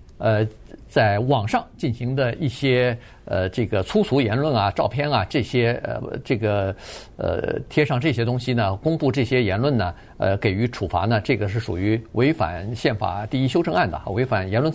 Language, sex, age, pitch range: Chinese, male, 50-69, 110-155 Hz